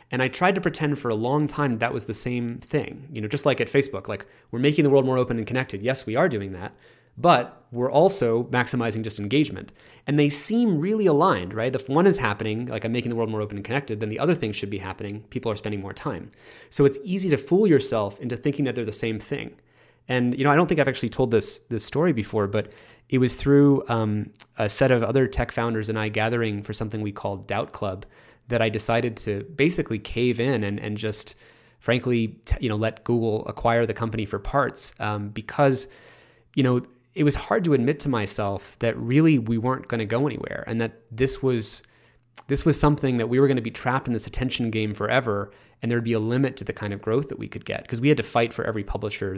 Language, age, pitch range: English, 30-49, 110-135 Hz